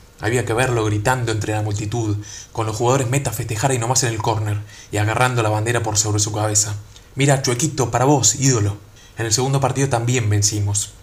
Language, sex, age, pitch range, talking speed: Spanish, male, 20-39, 105-120 Hz, 195 wpm